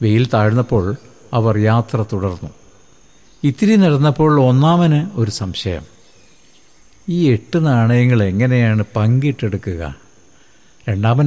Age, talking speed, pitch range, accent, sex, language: 60-79, 85 wpm, 105-140 Hz, native, male, Malayalam